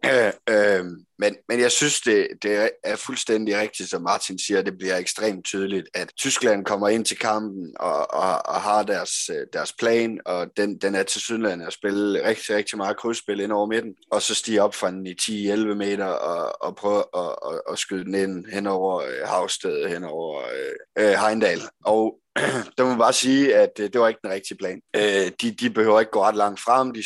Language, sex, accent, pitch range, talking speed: Danish, male, native, 100-115 Hz, 210 wpm